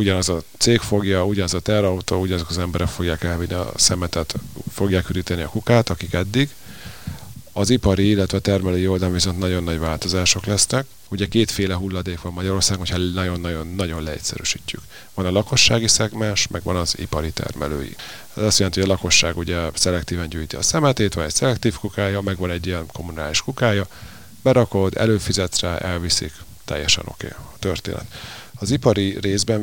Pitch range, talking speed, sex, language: 90-105 Hz, 165 wpm, male, Hungarian